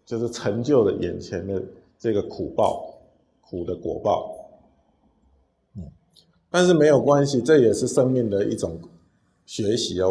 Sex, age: male, 50-69